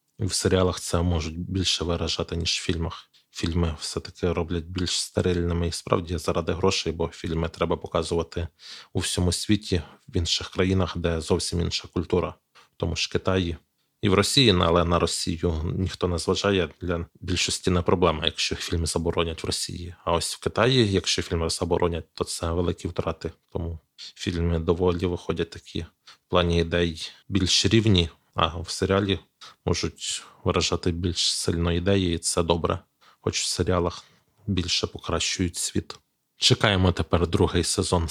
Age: 20-39